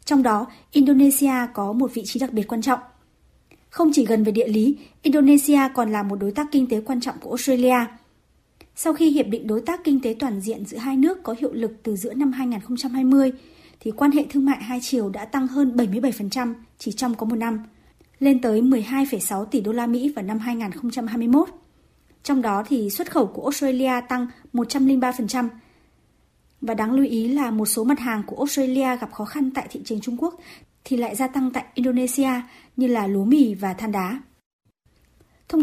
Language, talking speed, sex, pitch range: Vietnamese, 200 wpm, male, 230-275 Hz